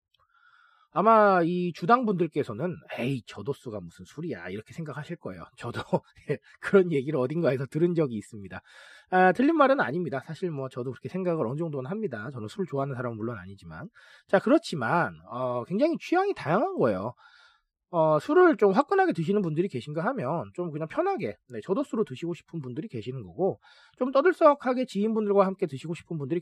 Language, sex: Korean, male